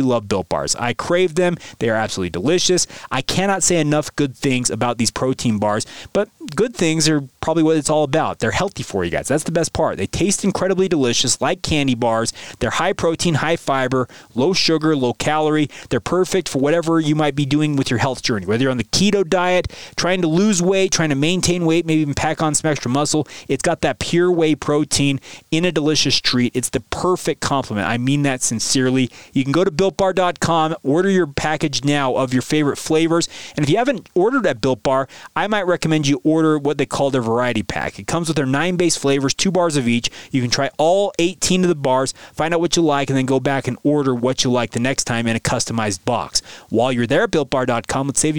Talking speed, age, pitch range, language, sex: 230 wpm, 30-49, 130-170 Hz, English, male